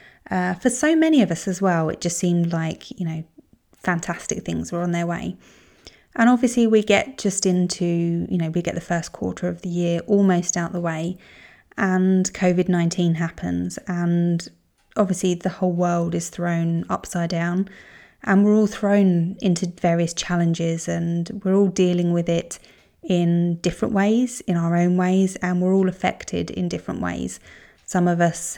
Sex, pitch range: female, 170-200 Hz